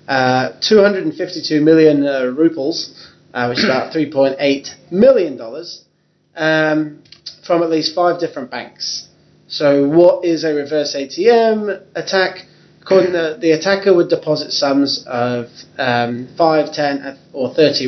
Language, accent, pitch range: English, British, 140-170 Hz